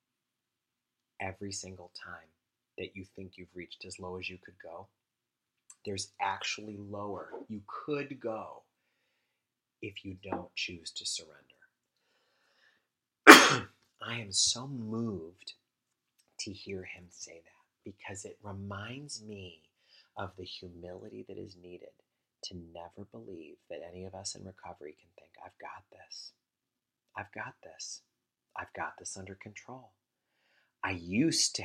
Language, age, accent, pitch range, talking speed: English, 30-49, American, 90-110 Hz, 135 wpm